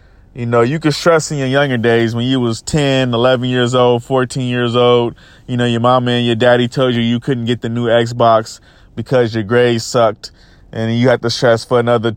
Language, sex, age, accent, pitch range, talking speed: English, male, 20-39, American, 115-125 Hz, 220 wpm